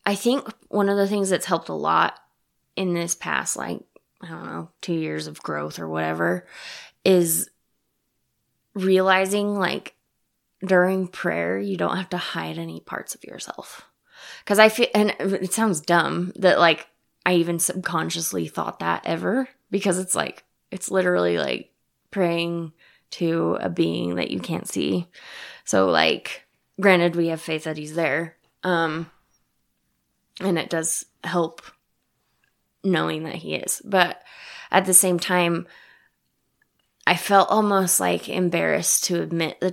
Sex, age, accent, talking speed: female, 20-39, American, 145 wpm